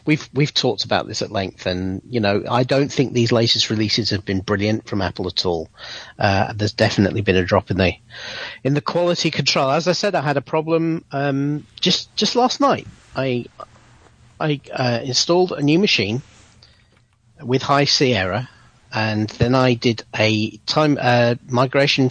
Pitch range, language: 115-145 Hz, English